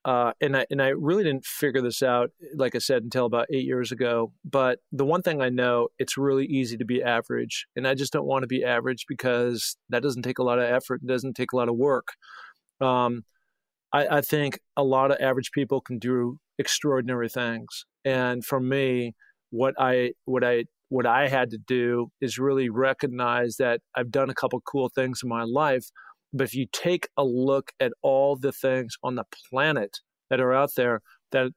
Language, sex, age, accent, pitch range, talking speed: English, male, 40-59, American, 125-135 Hz, 205 wpm